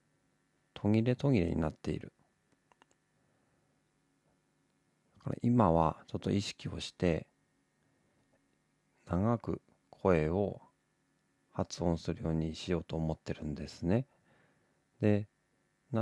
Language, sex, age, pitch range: Japanese, male, 40-59, 80-105 Hz